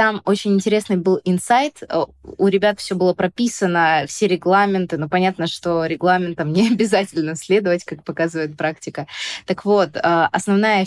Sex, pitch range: female, 170-200 Hz